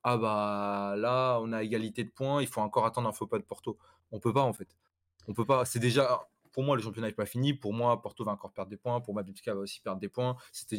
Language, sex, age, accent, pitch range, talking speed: French, male, 20-39, French, 100-125 Hz, 285 wpm